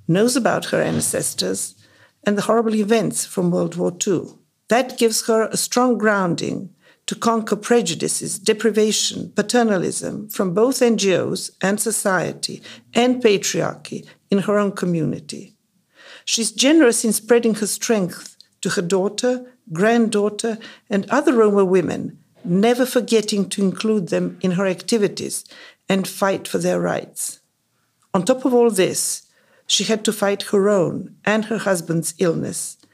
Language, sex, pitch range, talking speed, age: English, female, 185-230 Hz, 140 wpm, 50-69